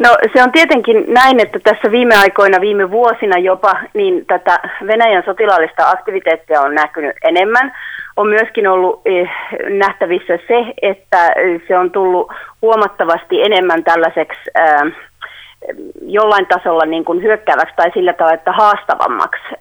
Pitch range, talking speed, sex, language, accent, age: 170-240 Hz, 120 wpm, female, Finnish, native, 30-49